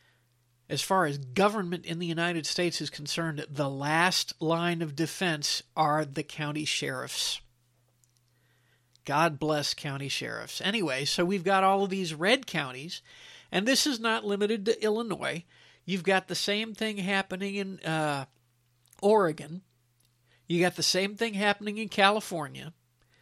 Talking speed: 145 wpm